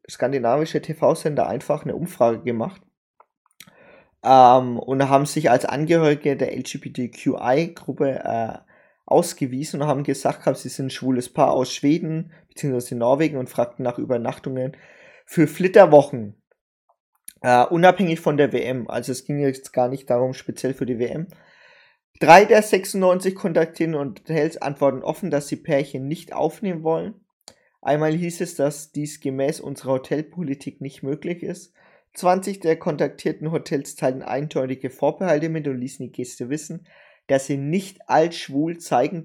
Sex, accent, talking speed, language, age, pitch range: male, German, 145 wpm, German, 20-39, 130-165 Hz